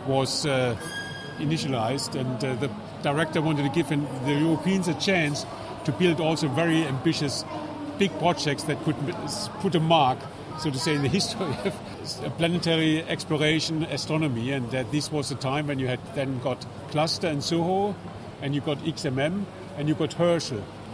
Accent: German